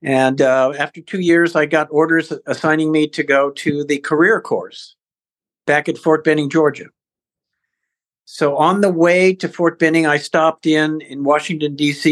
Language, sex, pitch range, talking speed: English, male, 145-175 Hz, 170 wpm